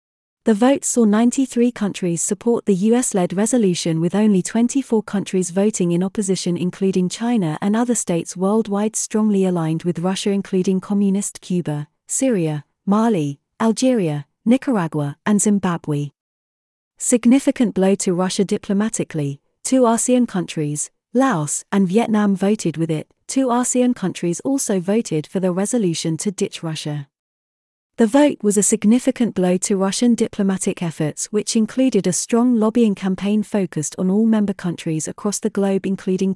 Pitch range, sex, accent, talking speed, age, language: 175-225 Hz, female, British, 140 wpm, 30-49, English